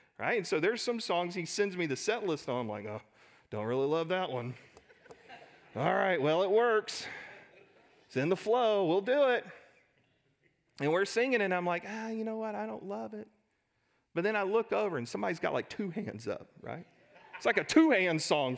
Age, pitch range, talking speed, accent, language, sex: 40-59, 175-225 Hz, 215 wpm, American, English, male